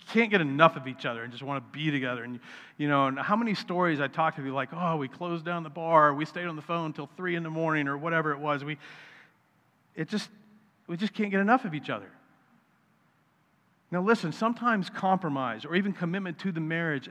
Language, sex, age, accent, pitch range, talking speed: English, male, 40-59, American, 150-195 Hz, 230 wpm